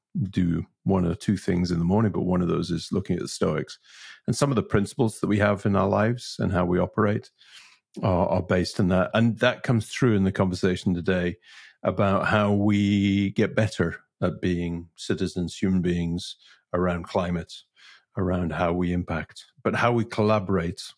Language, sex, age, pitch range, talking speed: English, male, 50-69, 90-105 Hz, 185 wpm